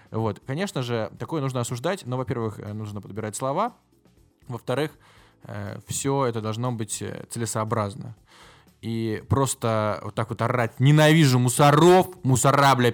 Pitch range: 110-130 Hz